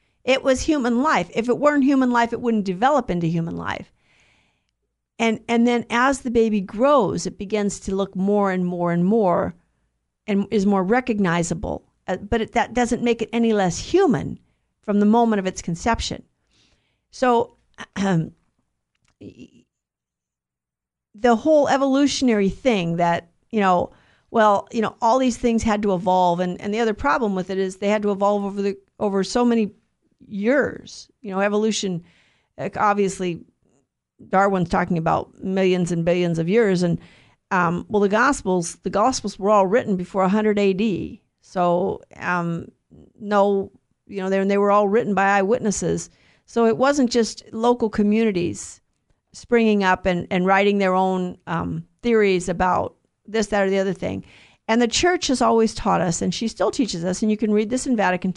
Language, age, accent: English, 50-69, American